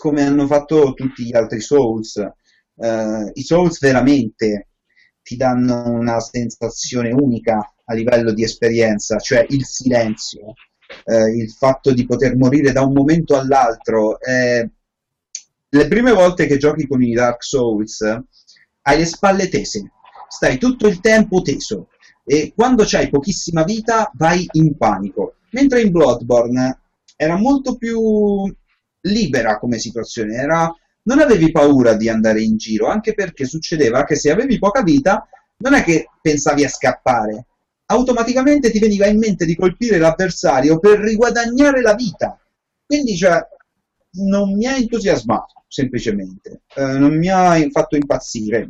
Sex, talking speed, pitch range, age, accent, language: male, 140 wpm, 120-200 Hz, 30-49, native, Italian